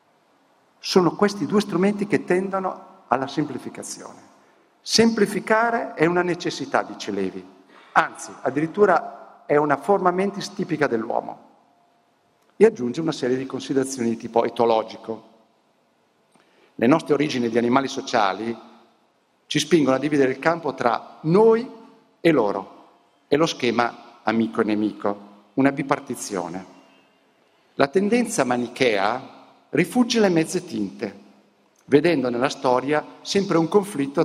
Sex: male